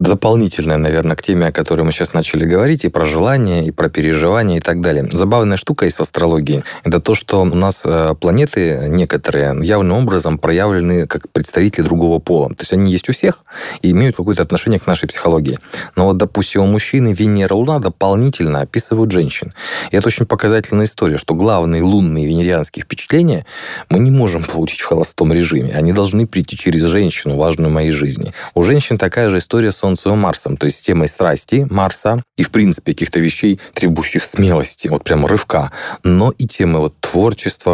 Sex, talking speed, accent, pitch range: male, 185 wpm, native, 85-105 Hz